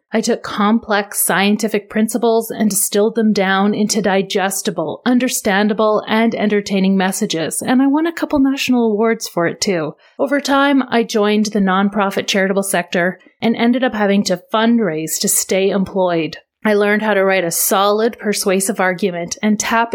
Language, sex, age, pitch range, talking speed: English, female, 30-49, 190-230 Hz, 160 wpm